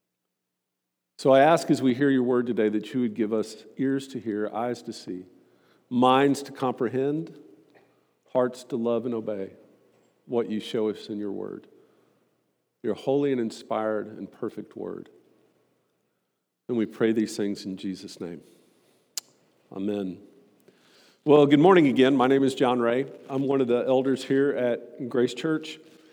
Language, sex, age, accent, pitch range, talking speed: English, male, 50-69, American, 115-150 Hz, 160 wpm